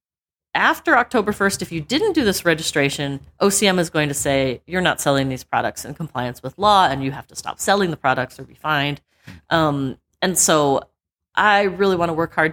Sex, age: female, 30-49